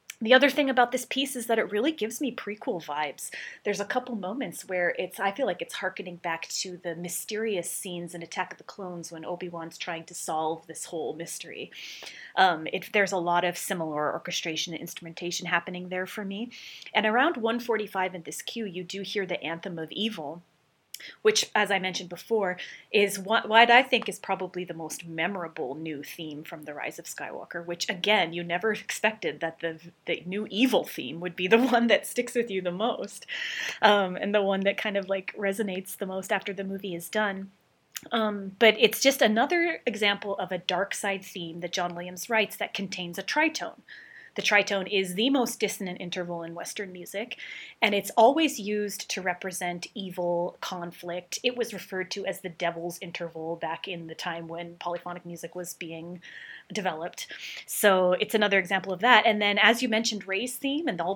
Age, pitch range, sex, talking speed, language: 30-49, 175-220 Hz, female, 195 wpm, English